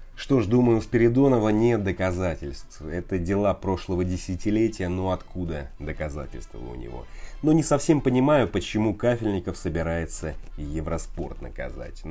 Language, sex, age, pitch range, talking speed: Russian, male, 30-49, 75-105 Hz, 125 wpm